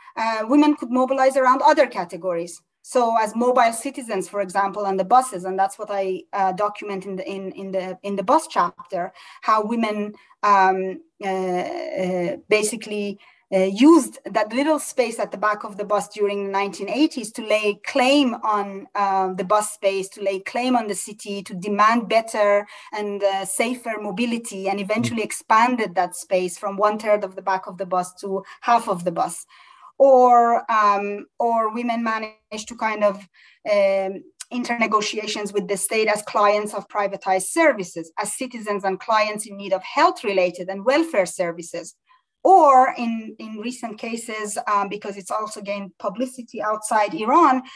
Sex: female